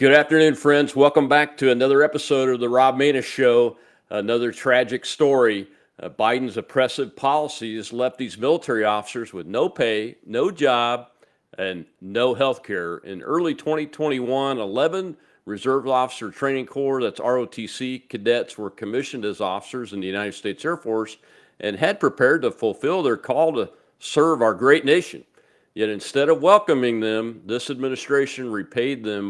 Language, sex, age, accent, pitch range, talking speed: English, male, 50-69, American, 110-145 Hz, 155 wpm